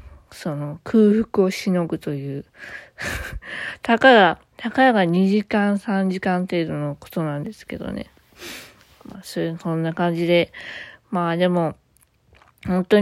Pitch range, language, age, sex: 170-220 Hz, Japanese, 20-39, female